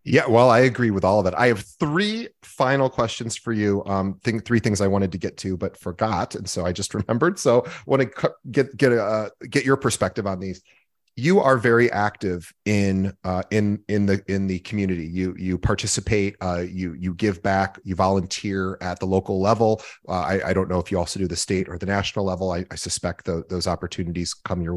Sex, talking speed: male, 225 wpm